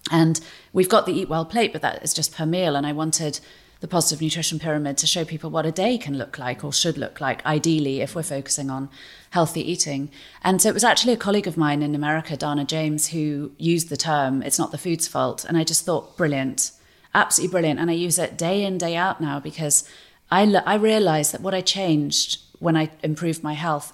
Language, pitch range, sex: English, 145-180 Hz, female